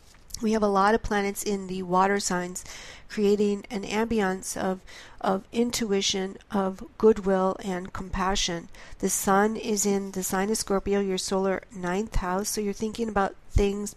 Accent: American